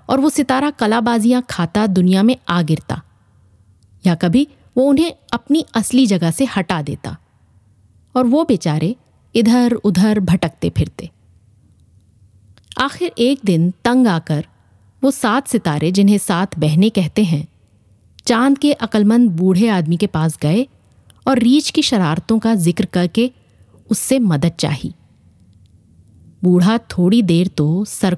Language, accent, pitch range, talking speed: Hindi, native, 140-235 Hz, 130 wpm